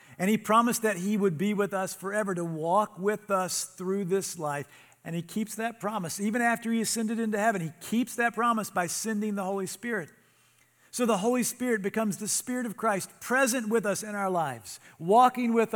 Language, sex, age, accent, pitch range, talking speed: English, male, 50-69, American, 145-205 Hz, 205 wpm